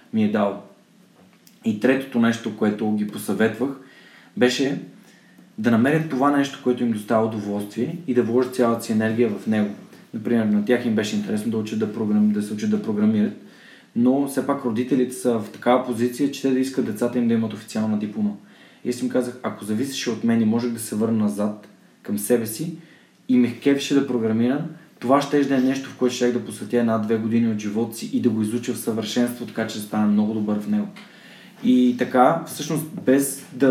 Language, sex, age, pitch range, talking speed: Bulgarian, male, 20-39, 115-150 Hz, 205 wpm